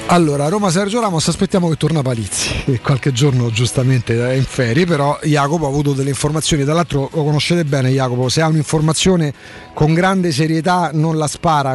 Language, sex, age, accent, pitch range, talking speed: Italian, male, 40-59, native, 130-165 Hz, 180 wpm